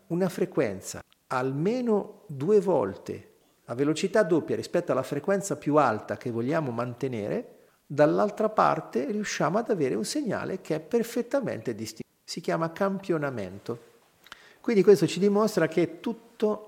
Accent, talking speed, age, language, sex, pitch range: native, 130 wpm, 50-69, Italian, male, 130-180 Hz